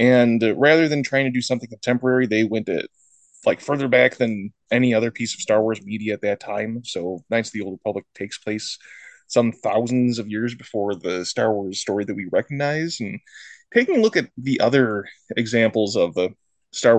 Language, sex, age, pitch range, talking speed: English, male, 20-39, 110-150 Hz, 200 wpm